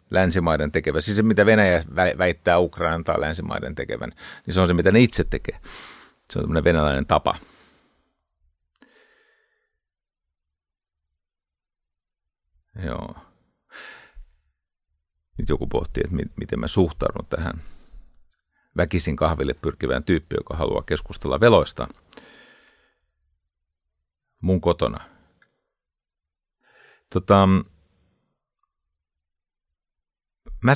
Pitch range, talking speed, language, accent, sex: 75-100 Hz, 90 wpm, Finnish, native, male